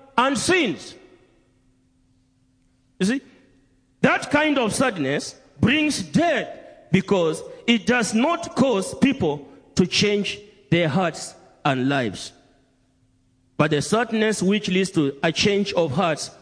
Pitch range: 130-185 Hz